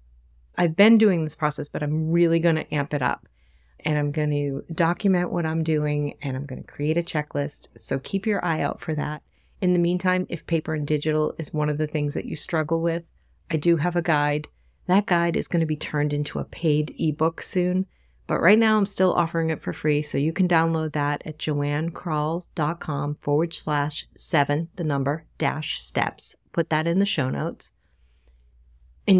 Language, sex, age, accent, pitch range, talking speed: English, female, 30-49, American, 150-180 Hz, 200 wpm